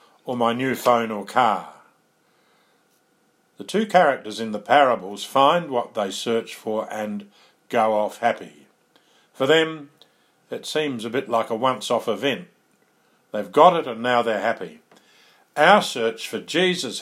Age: 50-69